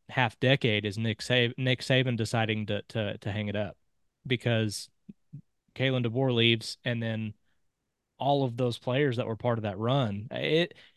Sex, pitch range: male, 115-140 Hz